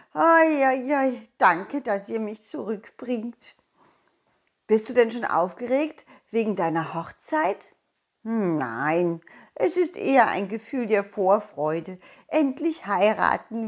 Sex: female